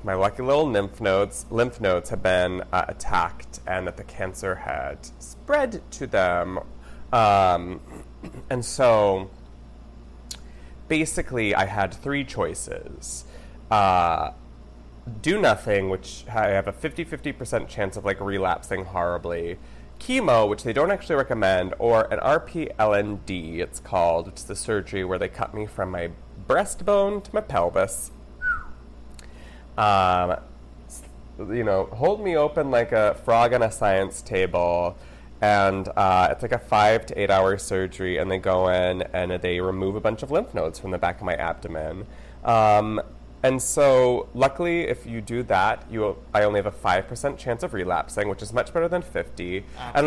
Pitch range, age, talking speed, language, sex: 85-125 Hz, 30-49, 155 wpm, English, male